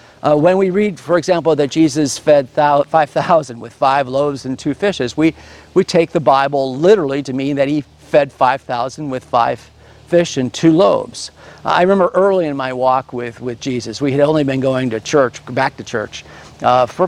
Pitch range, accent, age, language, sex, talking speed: 130-175 Hz, American, 50-69, English, male, 195 wpm